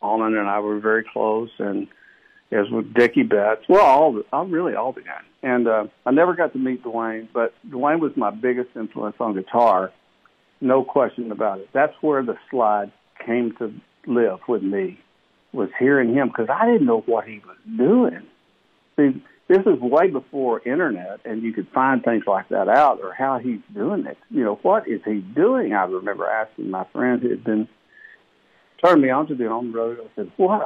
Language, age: English, 60-79